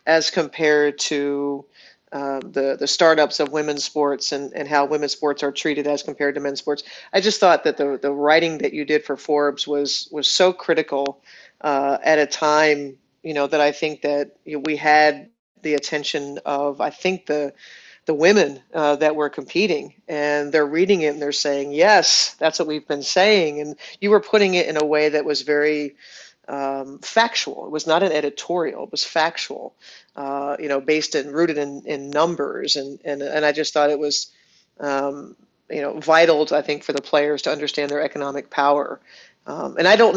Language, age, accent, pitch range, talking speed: English, 40-59, American, 145-155 Hz, 200 wpm